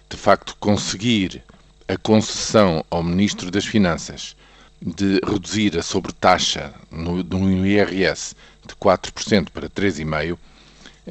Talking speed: 110 wpm